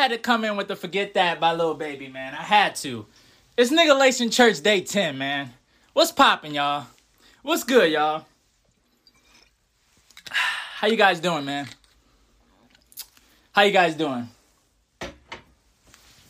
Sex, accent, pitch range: male, American, 165-230 Hz